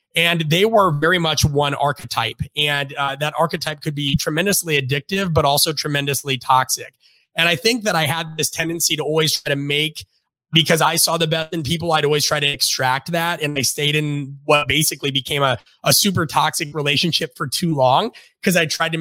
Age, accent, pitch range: 30-49, American, 140-170 Hz